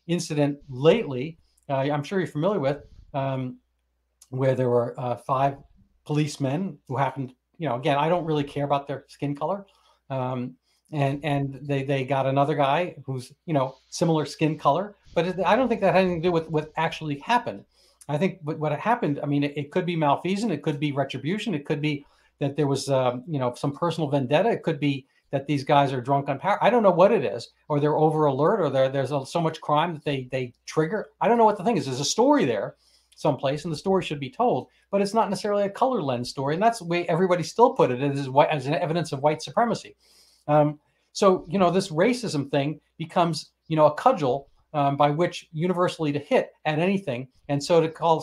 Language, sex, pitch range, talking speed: English, male, 140-175 Hz, 225 wpm